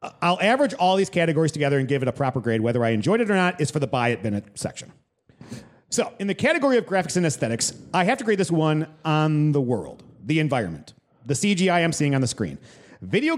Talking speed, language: 235 wpm, English